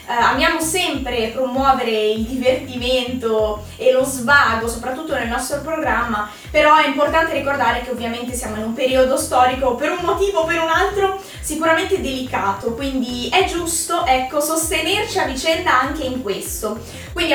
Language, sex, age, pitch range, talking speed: Italian, female, 20-39, 230-290 Hz, 145 wpm